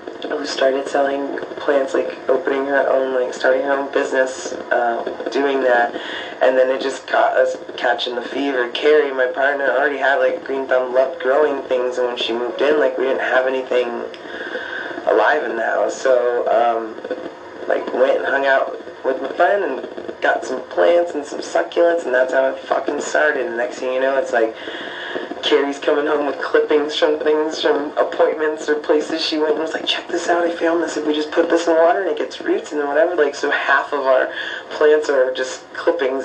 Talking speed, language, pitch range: 205 wpm, English, 125-160 Hz